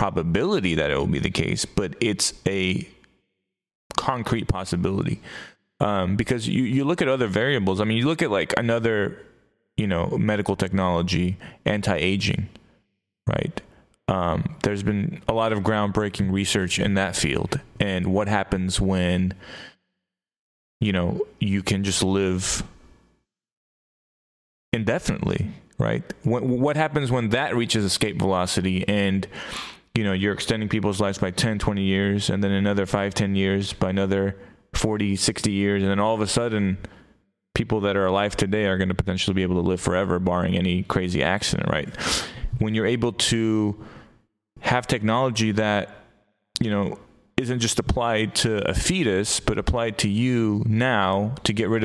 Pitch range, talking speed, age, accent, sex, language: 95-110 Hz, 155 wpm, 20-39, American, male, English